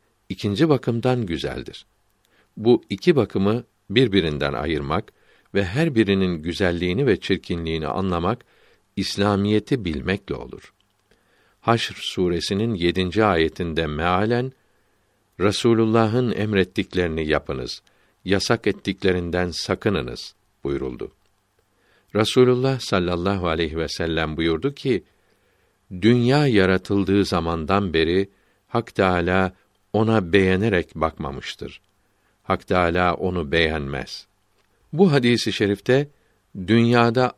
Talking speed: 85 wpm